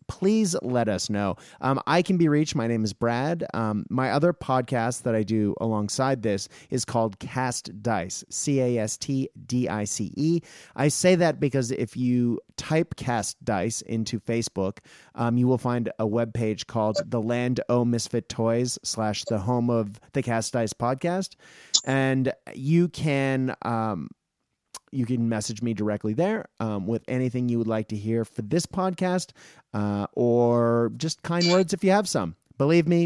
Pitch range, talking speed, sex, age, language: 110-145 Hz, 165 wpm, male, 30-49, English